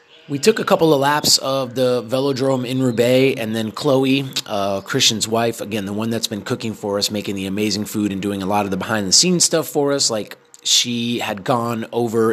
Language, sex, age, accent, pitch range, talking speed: English, male, 30-49, American, 100-130 Hz, 215 wpm